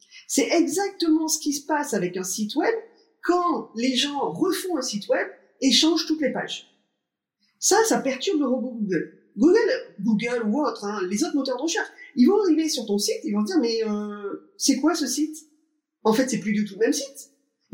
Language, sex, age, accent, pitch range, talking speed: French, female, 30-49, French, 220-330 Hz, 215 wpm